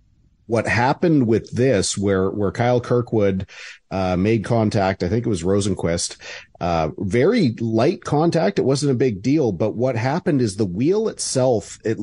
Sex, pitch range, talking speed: male, 95-120 Hz, 165 wpm